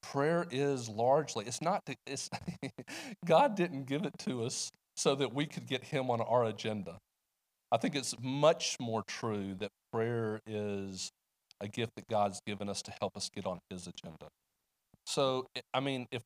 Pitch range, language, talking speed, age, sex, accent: 105-130 Hz, English, 175 wpm, 40-59, male, American